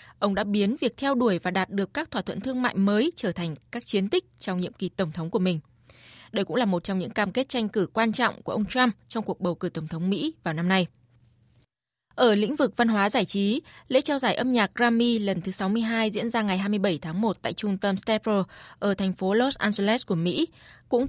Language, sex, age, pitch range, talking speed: Vietnamese, female, 20-39, 185-235 Hz, 245 wpm